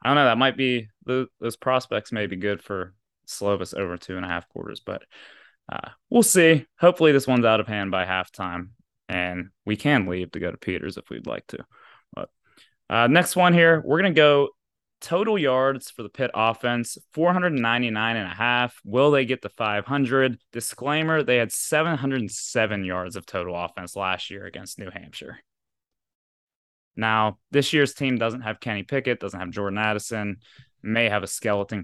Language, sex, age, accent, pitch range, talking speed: English, male, 20-39, American, 95-125 Hz, 180 wpm